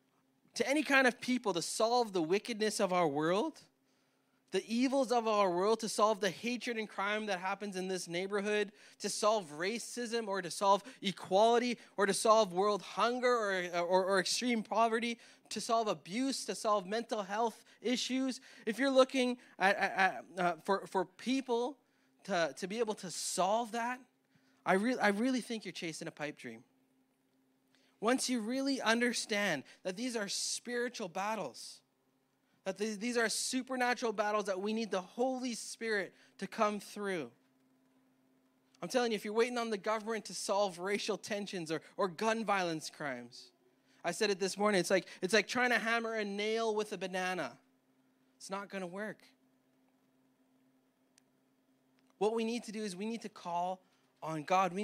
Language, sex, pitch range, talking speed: English, male, 175-230 Hz, 170 wpm